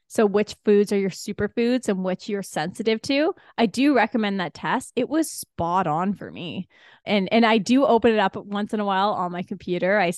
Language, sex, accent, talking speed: English, female, American, 220 wpm